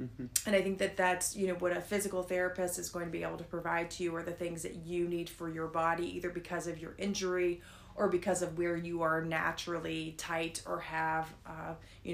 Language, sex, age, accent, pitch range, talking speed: English, female, 30-49, American, 170-185 Hz, 225 wpm